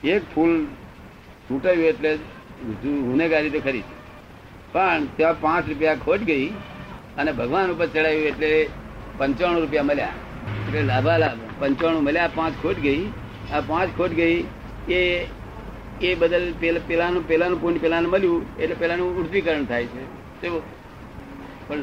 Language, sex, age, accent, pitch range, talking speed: Gujarati, male, 60-79, native, 135-170 Hz, 30 wpm